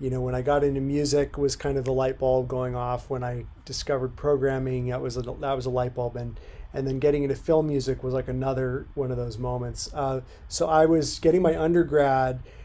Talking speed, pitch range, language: 230 wpm, 130-160 Hz, English